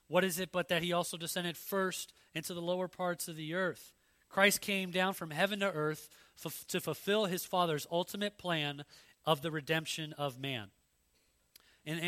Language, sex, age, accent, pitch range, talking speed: English, male, 30-49, American, 155-190 Hz, 180 wpm